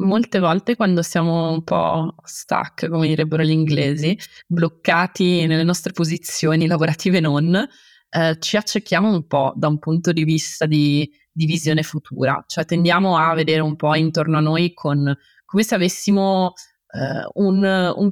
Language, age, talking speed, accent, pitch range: Italian, 20-39, 150 wpm, native, 155-195 Hz